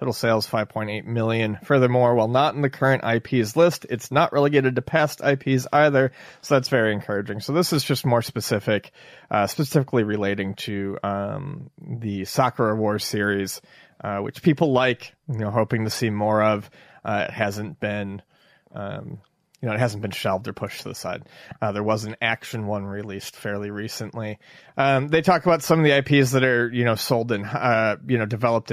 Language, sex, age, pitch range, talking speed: English, male, 30-49, 105-135 Hz, 190 wpm